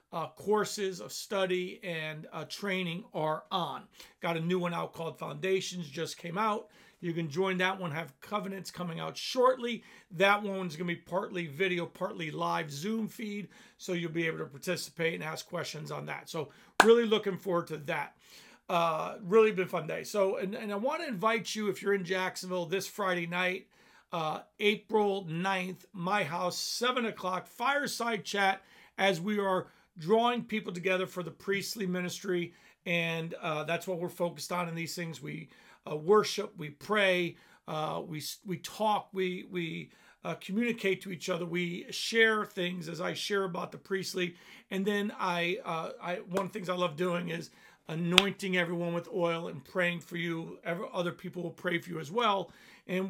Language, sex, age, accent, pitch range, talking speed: English, male, 40-59, American, 170-200 Hz, 185 wpm